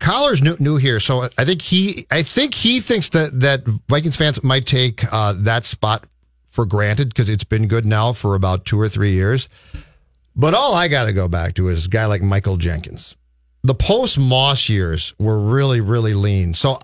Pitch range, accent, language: 105-140 Hz, American, English